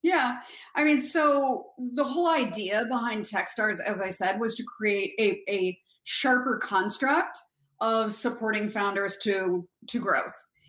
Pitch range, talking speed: 195-230 Hz, 140 wpm